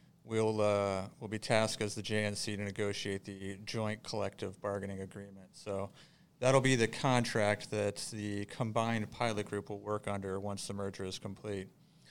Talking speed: 165 wpm